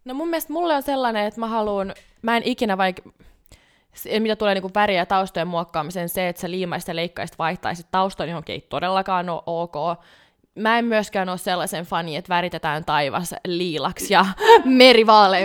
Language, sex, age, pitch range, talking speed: Finnish, female, 20-39, 170-215 Hz, 185 wpm